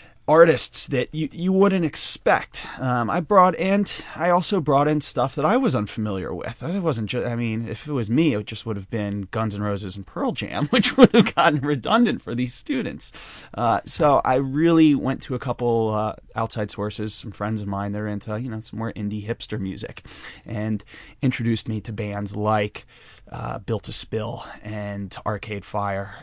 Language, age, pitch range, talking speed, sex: English, 20-39, 105-130 Hz, 195 wpm, male